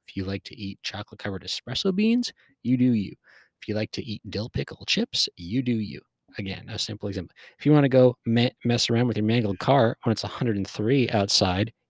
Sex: male